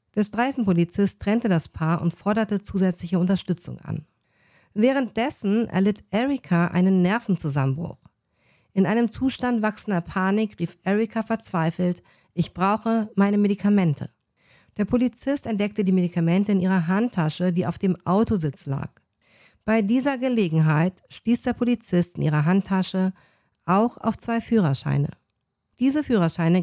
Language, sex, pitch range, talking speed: German, female, 170-220 Hz, 125 wpm